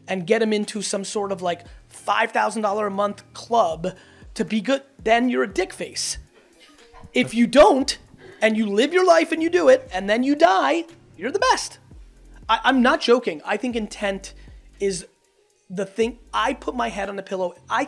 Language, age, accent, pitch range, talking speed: English, 30-49, American, 185-225 Hz, 190 wpm